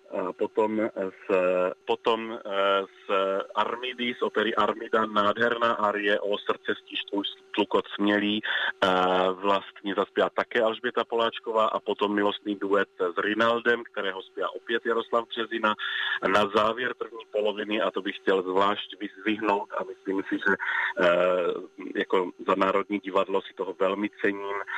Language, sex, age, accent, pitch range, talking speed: Czech, male, 30-49, native, 95-115 Hz, 130 wpm